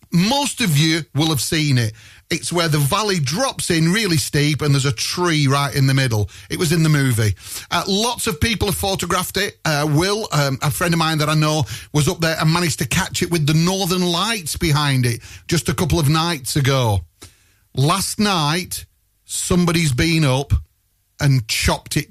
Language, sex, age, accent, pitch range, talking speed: English, male, 30-49, British, 120-175 Hz, 200 wpm